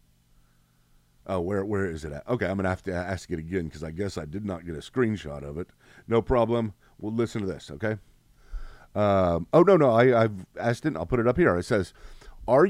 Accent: American